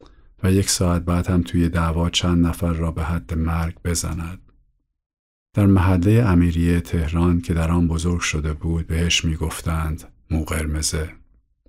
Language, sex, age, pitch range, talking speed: Persian, male, 50-69, 80-90 Hz, 140 wpm